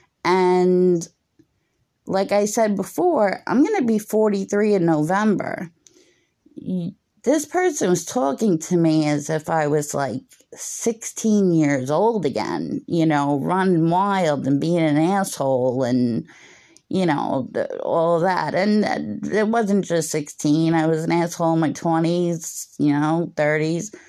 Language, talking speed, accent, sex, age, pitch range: English, 135 wpm, American, female, 30-49, 145-185 Hz